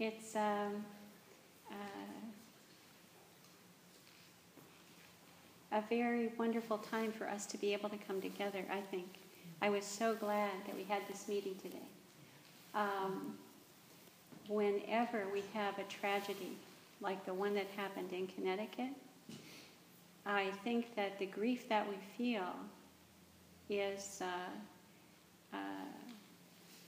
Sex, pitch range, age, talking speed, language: female, 190-215 Hz, 50-69, 115 wpm, English